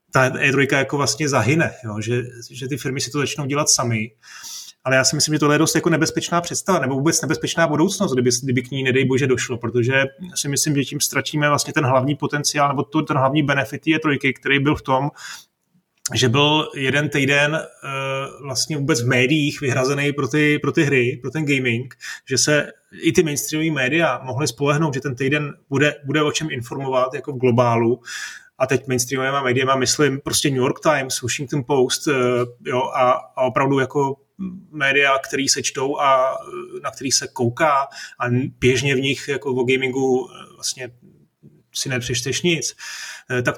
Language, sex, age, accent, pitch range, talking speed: Czech, male, 30-49, native, 135-160 Hz, 180 wpm